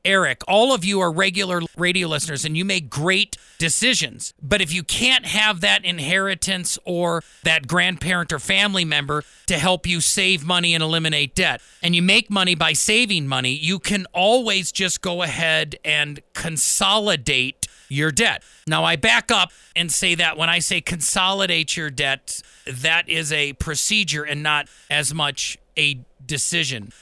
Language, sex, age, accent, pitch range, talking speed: English, male, 40-59, American, 160-195 Hz, 165 wpm